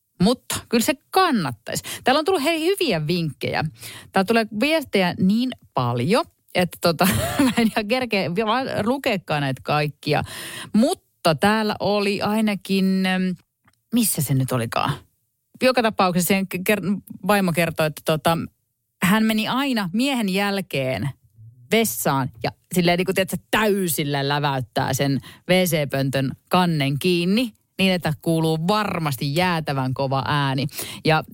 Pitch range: 135-205 Hz